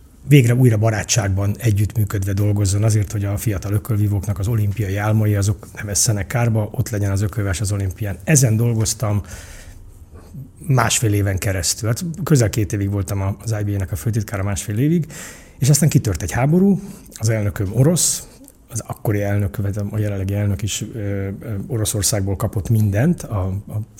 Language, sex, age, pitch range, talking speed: Hungarian, male, 30-49, 100-120 Hz, 155 wpm